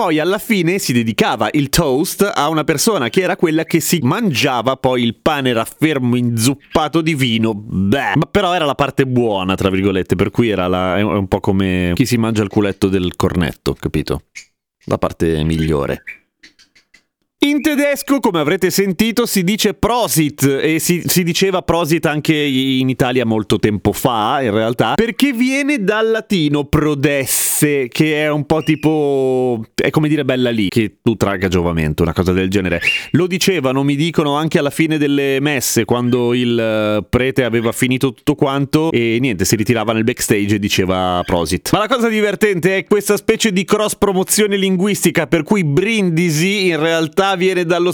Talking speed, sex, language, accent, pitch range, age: 175 wpm, male, Italian, native, 115-180 Hz, 30-49